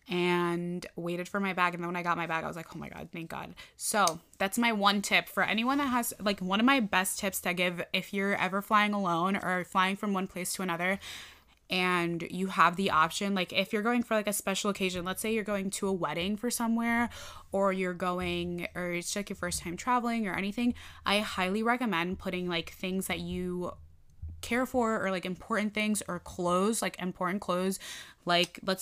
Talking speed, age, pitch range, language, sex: 220 wpm, 20-39, 175-200 Hz, English, female